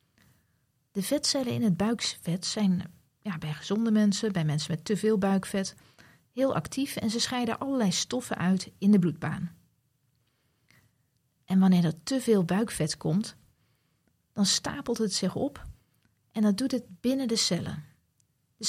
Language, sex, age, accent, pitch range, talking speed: Dutch, female, 40-59, Dutch, 170-225 Hz, 150 wpm